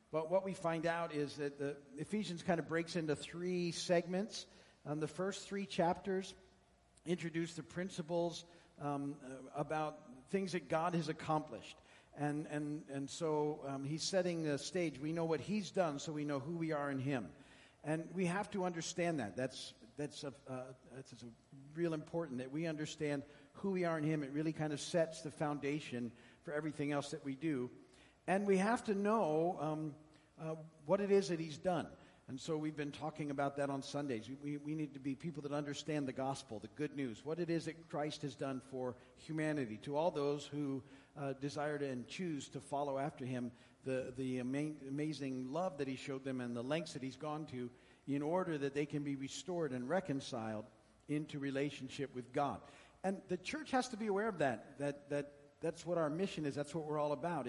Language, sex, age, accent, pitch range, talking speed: English, male, 50-69, American, 140-165 Hz, 205 wpm